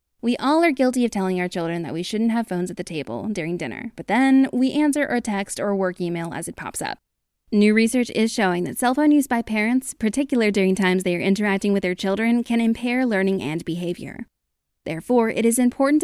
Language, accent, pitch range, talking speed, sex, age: English, American, 185-245 Hz, 220 wpm, female, 20-39